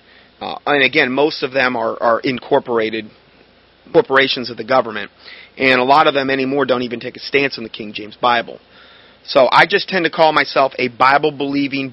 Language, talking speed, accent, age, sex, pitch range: English, 190 wpm, American, 30-49, male, 140-195 Hz